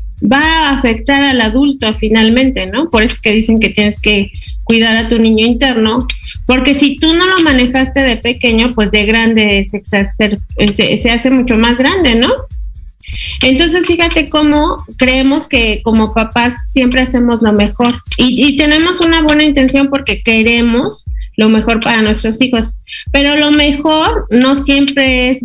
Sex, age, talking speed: female, 30-49, 160 wpm